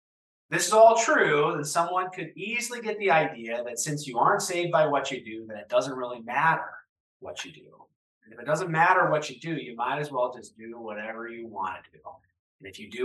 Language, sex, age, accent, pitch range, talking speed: English, male, 30-49, American, 125-180 Hz, 235 wpm